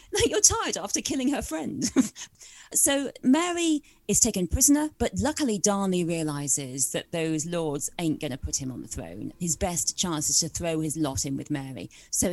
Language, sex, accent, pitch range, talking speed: English, female, British, 155-225 Hz, 185 wpm